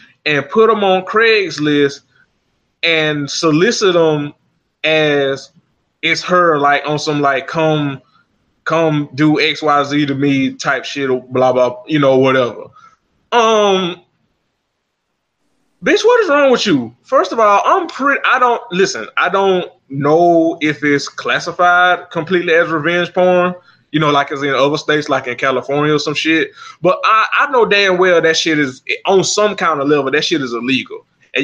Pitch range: 145-180 Hz